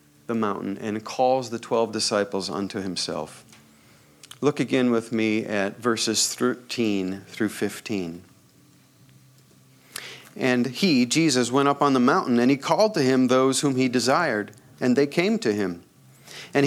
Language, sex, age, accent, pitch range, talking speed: English, male, 40-59, American, 115-175 Hz, 150 wpm